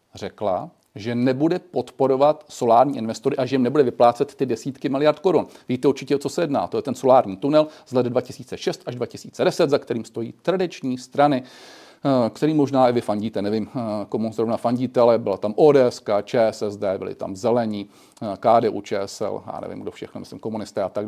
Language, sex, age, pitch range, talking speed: Czech, male, 40-59, 115-145 Hz, 180 wpm